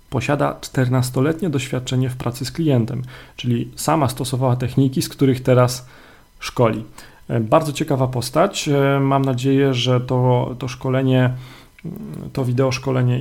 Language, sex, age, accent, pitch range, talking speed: Polish, male, 40-59, native, 120-135 Hz, 125 wpm